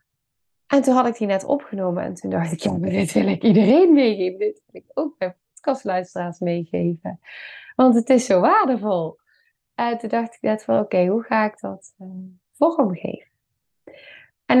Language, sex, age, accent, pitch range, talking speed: Dutch, female, 20-39, Dutch, 180-230 Hz, 175 wpm